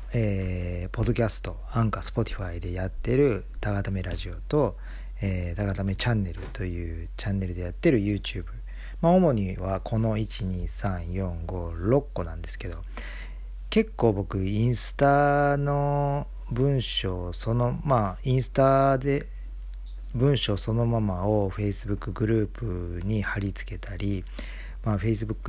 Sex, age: male, 40-59